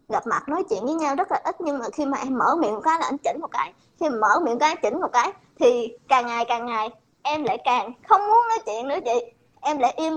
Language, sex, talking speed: Vietnamese, male, 295 wpm